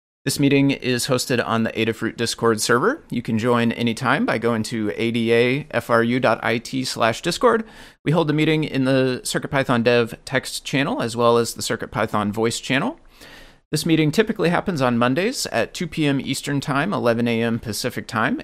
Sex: male